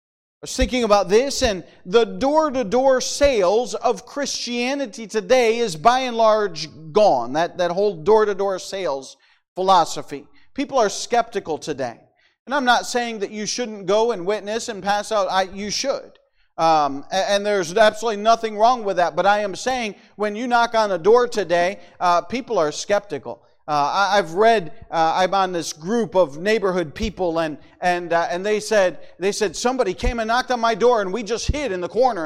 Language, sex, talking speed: English, male, 185 wpm